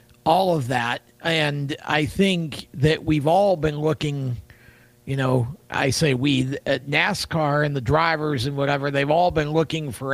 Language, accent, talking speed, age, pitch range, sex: English, American, 165 wpm, 50-69, 135-160 Hz, male